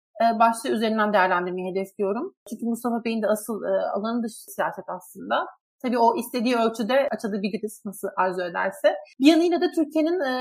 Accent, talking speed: native, 160 wpm